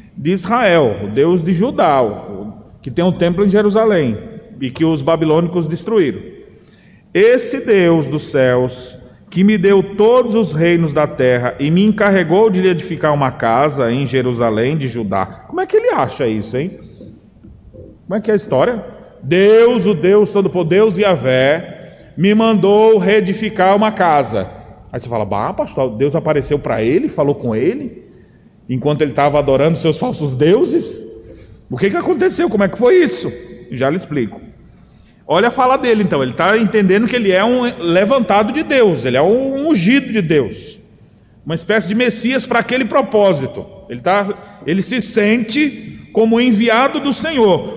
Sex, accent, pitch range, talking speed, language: male, Brazilian, 150-235 Hz, 170 wpm, Portuguese